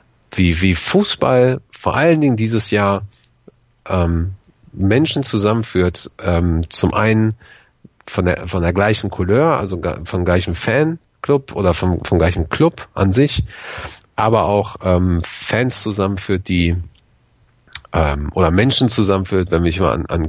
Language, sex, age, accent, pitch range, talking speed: German, male, 40-59, German, 85-105 Hz, 135 wpm